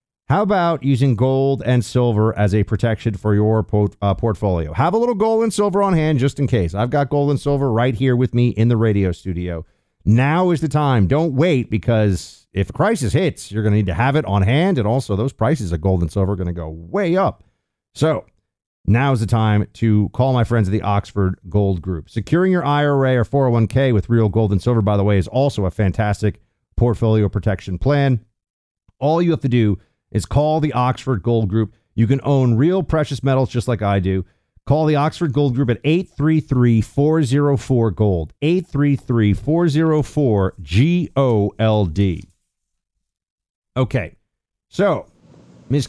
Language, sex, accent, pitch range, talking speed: English, male, American, 105-140 Hz, 180 wpm